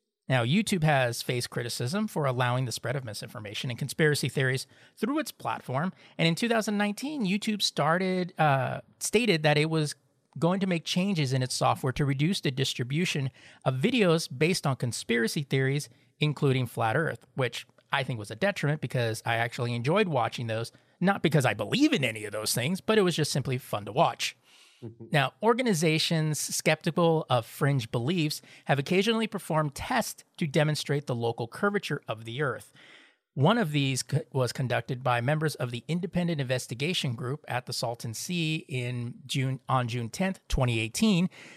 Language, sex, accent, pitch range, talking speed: English, male, American, 125-170 Hz, 165 wpm